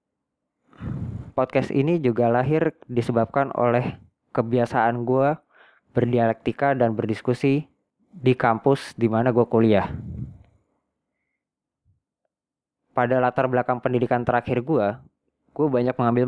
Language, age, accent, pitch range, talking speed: Indonesian, 20-39, native, 115-135 Hz, 95 wpm